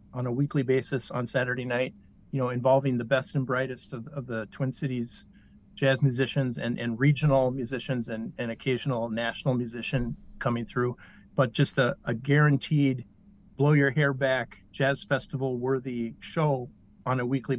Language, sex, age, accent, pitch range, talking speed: English, male, 40-59, American, 120-140 Hz, 165 wpm